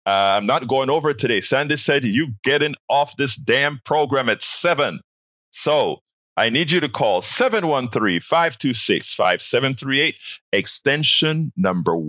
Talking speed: 140 wpm